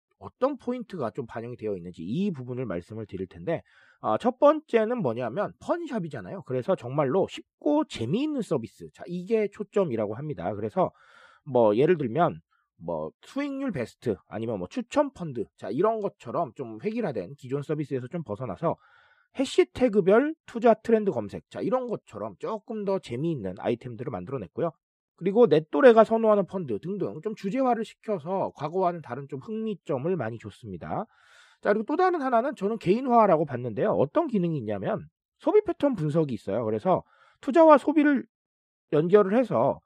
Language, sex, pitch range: Korean, male, 150-245 Hz